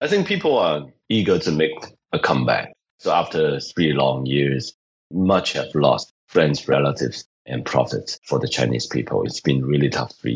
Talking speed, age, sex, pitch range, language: 180 wpm, 30-49, male, 65-80 Hz, English